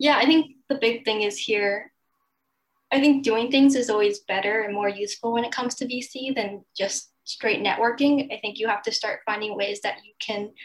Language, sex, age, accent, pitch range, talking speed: English, female, 10-29, American, 210-240 Hz, 215 wpm